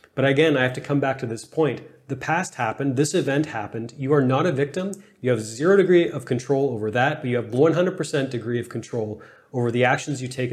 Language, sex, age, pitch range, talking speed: English, male, 30-49, 120-145 Hz, 235 wpm